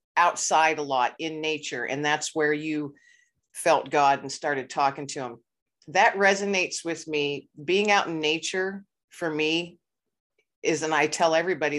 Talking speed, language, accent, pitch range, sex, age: 160 wpm, English, American, 150-175 Hz, female, 50-69